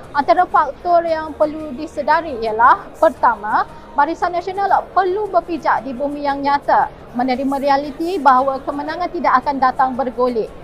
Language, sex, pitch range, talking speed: Malay, female, 260-335 Hz, 130 wpm